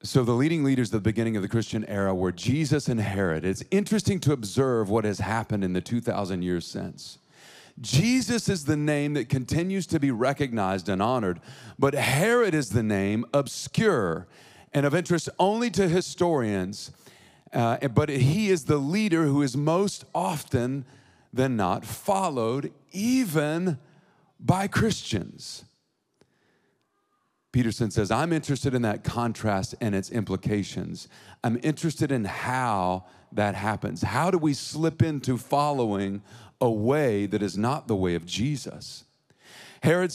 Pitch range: 110-145 Hz